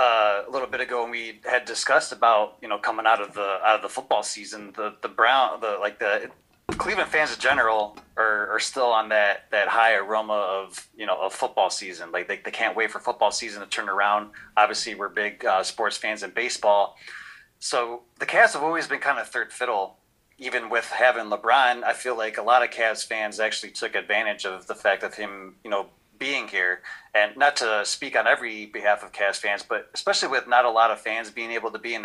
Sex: male